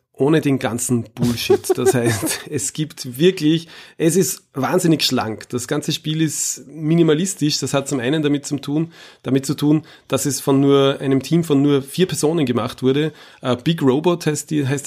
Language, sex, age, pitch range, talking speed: German, male, 30-49, 130-155 Hz, 180 wpm